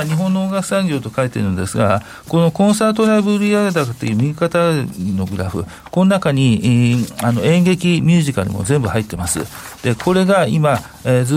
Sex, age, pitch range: male, 50-69, 100-150 Hz